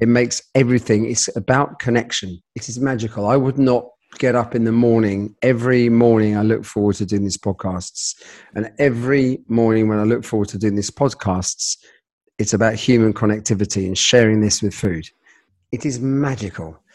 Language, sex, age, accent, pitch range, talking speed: English, male, 40-59, British, 105-135 Hz, 175 wpm